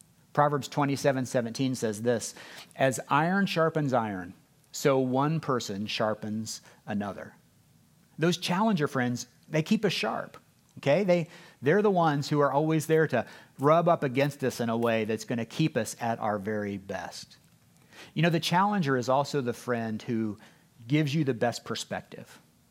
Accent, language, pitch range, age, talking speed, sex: American, English, 120-160 Hz, 50-69, 160 wpm, male